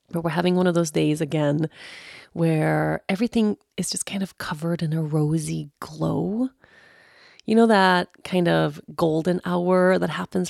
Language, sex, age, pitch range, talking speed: English, female, 30-49, 155-185 Hz, 160 wpm